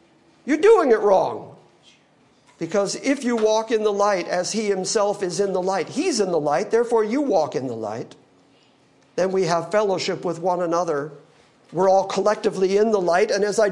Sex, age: male, 50-69